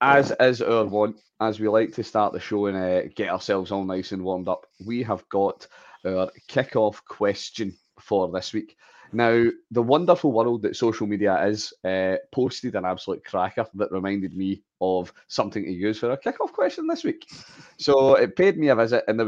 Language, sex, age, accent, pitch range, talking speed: English, male, 30-49, British, 100-130 Hz, 195 wpm